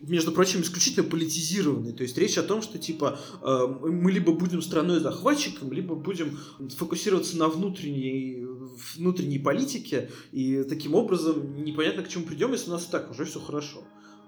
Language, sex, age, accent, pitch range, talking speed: Russian, male, 20-39, native, 135-165 Hz, 150 wpm